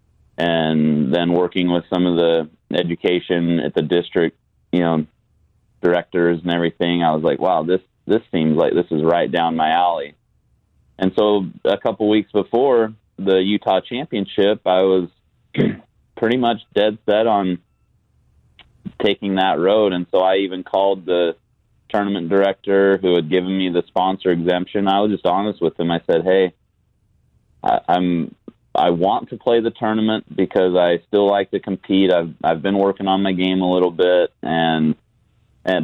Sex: male